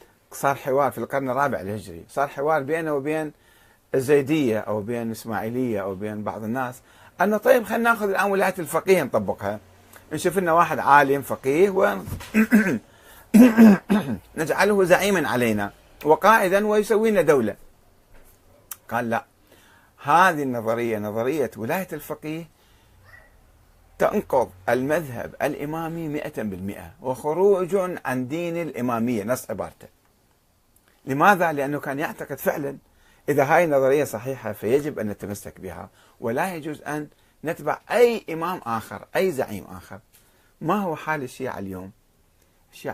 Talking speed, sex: 115 wpm, male